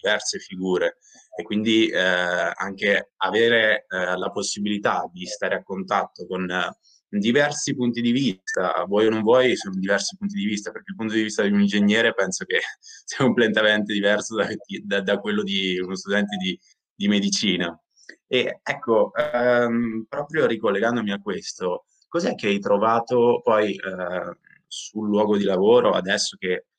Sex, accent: male, native